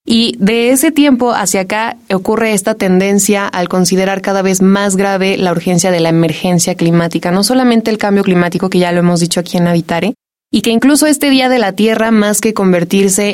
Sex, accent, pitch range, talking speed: female, Mexican, 180-220 Hz, 200 wpm